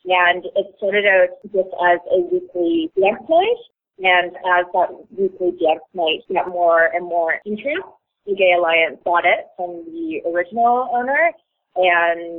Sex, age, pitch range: female, 20-39, 165-190 Hz